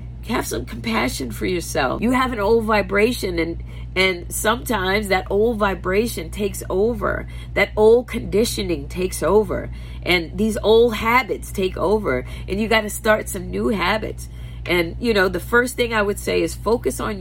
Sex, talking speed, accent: female, 170 wpm, American